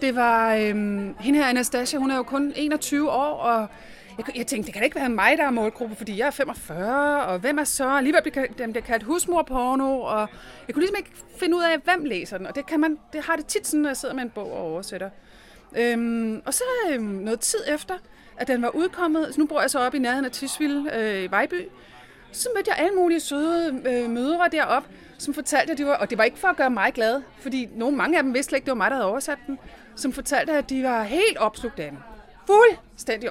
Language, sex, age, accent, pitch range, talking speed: Danish, female, 30-49, native, 230-305 Hz, 250 wpm